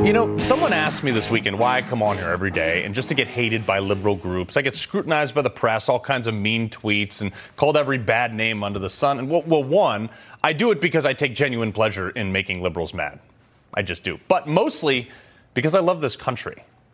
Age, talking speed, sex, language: 30-49, 235 wpm, male, English